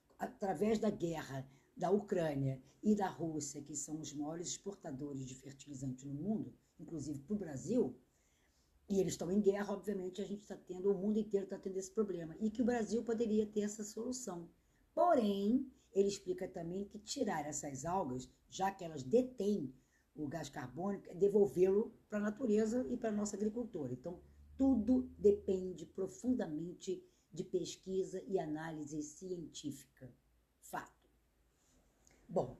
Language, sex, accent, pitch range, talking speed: Portuguese, female, Brazilian, 155-210 Hz, 150 wpm